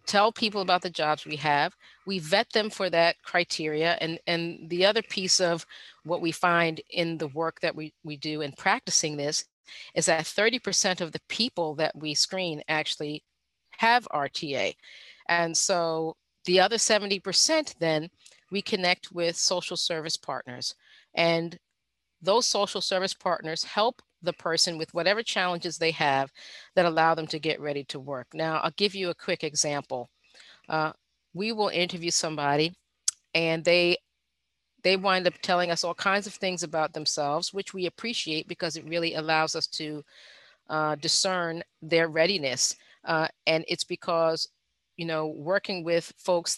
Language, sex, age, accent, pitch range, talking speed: English, female, 40-59, American, 155-185 Hz, 160 wpm